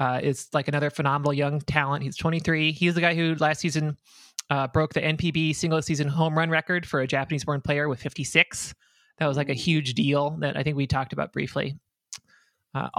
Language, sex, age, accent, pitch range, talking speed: English, male, 20-39, American, 140-165 Hz, 210 wpm